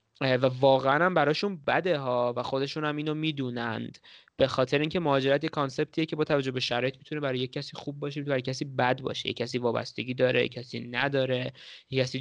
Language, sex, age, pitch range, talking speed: Persian, male, 20-39, 125-145 Hz, 185 wpm